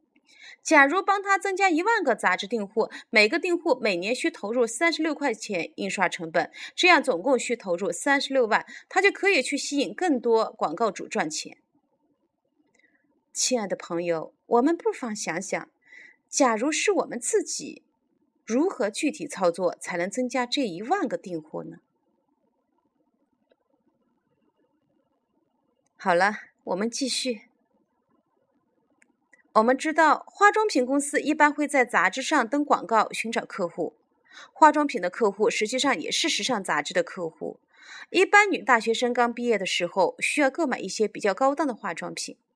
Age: 30-49